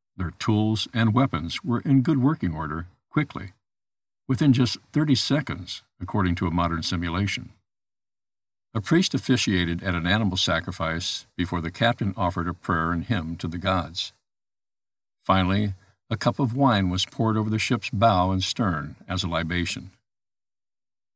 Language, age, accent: English, 60-79, American